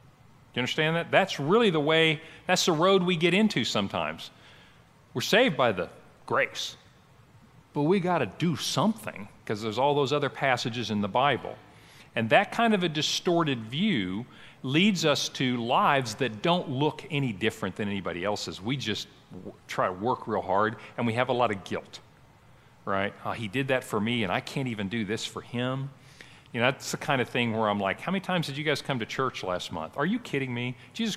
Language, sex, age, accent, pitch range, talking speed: English, male, 40-59, American, 115-150 Hz, 205 wpm